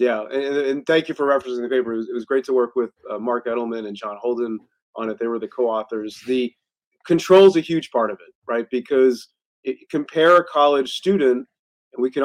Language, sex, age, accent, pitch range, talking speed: English, male, 30-49, American, 120-155 Hz, 220 wpm